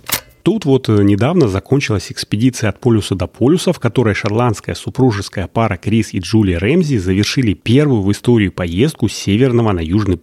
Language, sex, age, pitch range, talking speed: Russian, male, 30-49, 100-135 Hz, 160 wpm